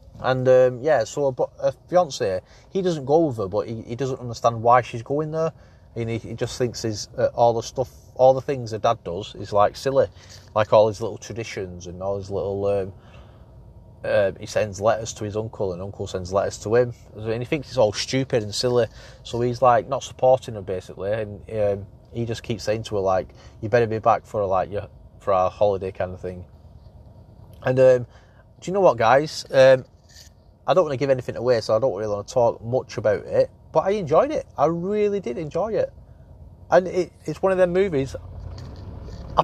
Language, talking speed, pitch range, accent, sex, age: English, 215 wpm, 105-145 Hz, British, male, 30-49